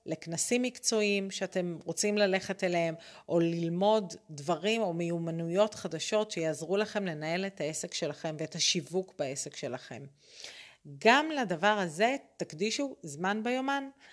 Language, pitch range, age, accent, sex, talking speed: Hebrew, 170-210 Hz, 40-59, native, female, 120 wpm